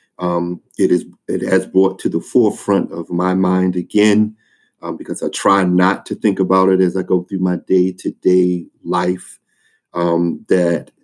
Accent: American